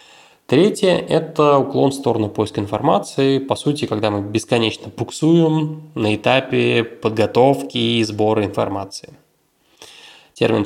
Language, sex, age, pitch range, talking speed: Russian, male, 20-39, 110-145 Hz, 120 wpm